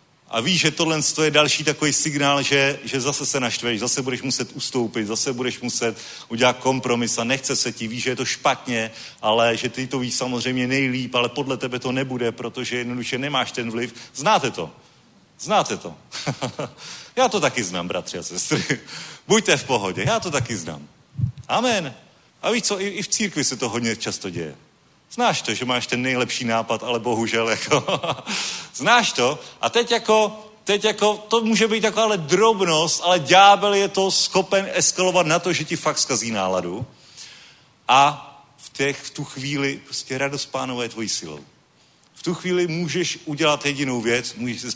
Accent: native